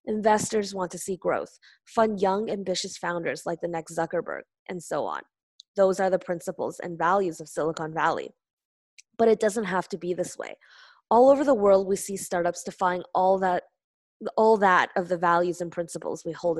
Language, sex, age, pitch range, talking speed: English, female, 20-39, 175-205 Hz, 185 wpm